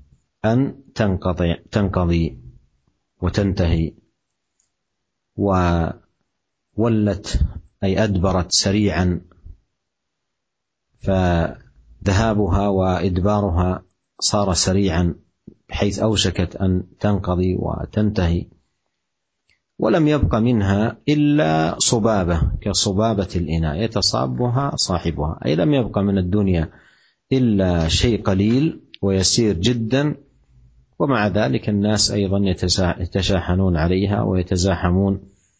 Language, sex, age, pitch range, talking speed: Indonesian, male, 50-69, 85-105 Hz, 70 wpm